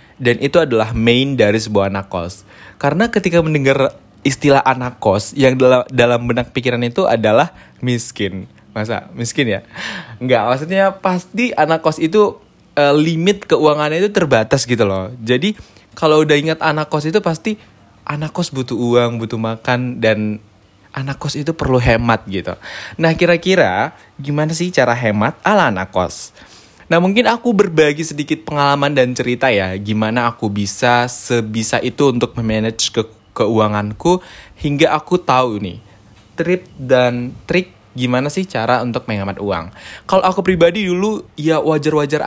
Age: 20-39